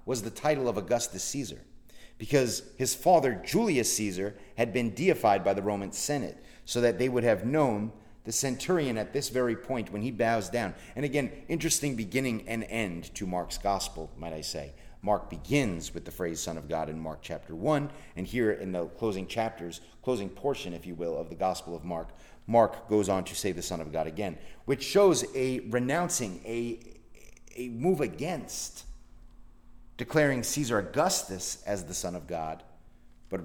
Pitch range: 85-125 Hz